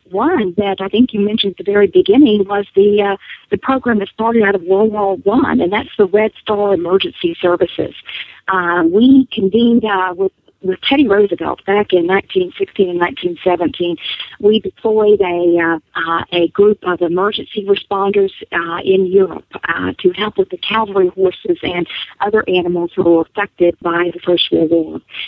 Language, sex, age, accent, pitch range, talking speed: English, female, 50-69, American, 180-210 Hz, 175 wpm